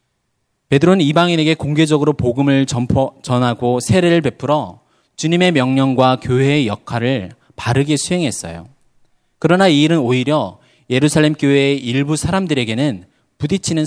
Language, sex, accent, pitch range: Korean, male, native, 115-150 Hz